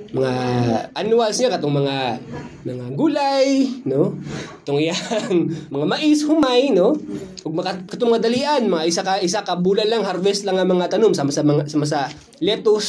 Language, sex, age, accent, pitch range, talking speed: Filipino, male, 20-39, native, 190-295 Hz, 155 wpm